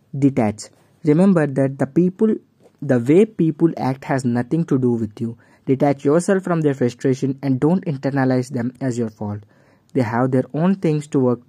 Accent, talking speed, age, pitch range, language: Indian, 180 wpm, 20-39, 125-155 Hz, English